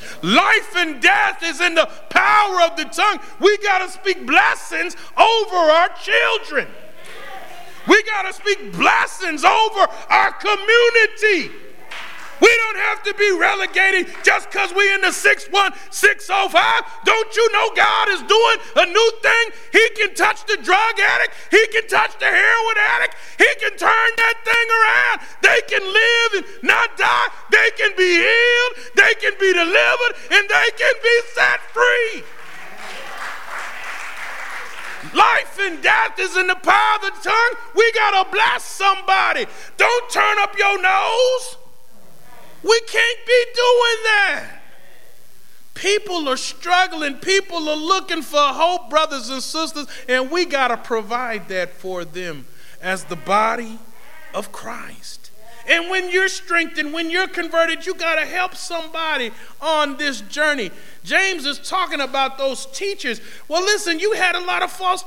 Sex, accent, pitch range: male, American, 330-430 Hz